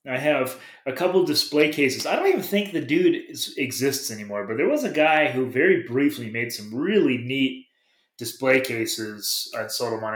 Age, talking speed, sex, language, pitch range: 30-49, 190 wpm, male, English, 125-175 Hz